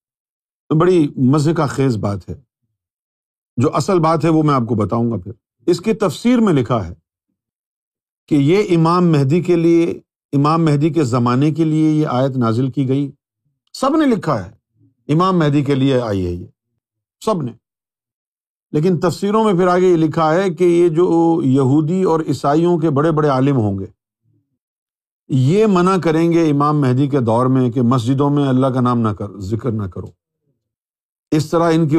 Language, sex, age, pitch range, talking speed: Urdu, male, 50-69, 125-165 Hz, 180 wpm